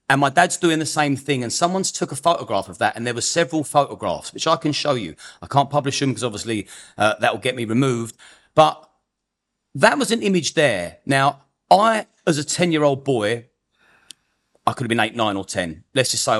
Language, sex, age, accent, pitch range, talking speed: English, male, 40-59, British, 125-155 Hz, 210 wpm